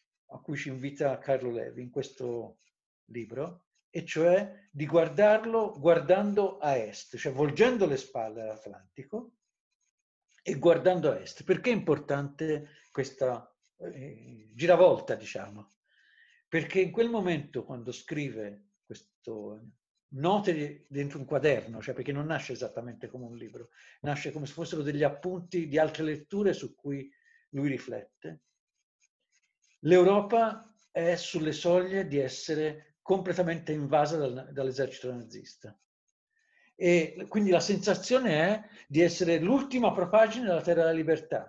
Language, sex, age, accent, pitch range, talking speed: English, male, 50-69, Italian, 140-195 Hz, 125 wpm